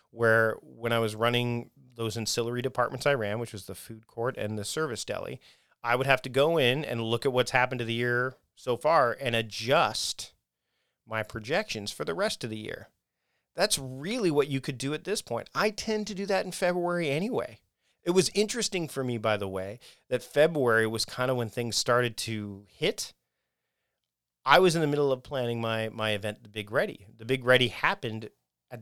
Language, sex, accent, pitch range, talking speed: English, male, American, 110-135 Hz, 205 wpm